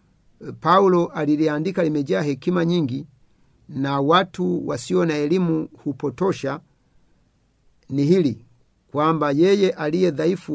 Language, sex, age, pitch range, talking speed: Swahili, male, 50-69, 140-175 Hz, 90 wpm